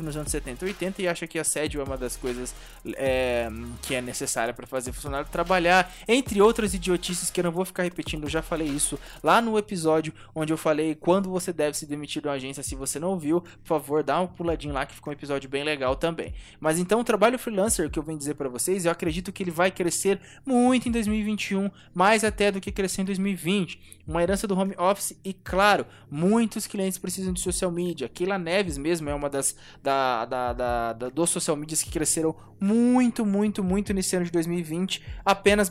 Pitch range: 150-195 Hz